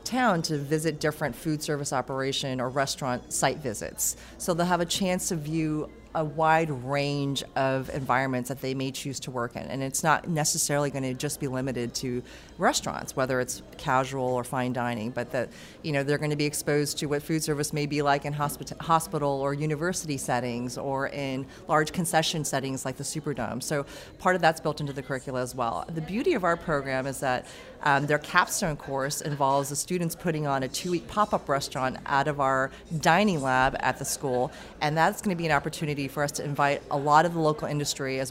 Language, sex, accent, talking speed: English, female, American, 205 wpm